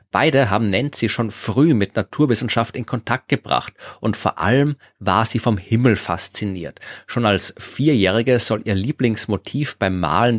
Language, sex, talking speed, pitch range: German, male, 150 wpm, 105-135 Hz